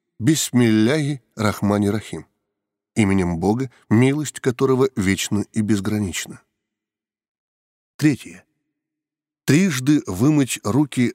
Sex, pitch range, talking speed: male, 105-140 Hz, 75 wpm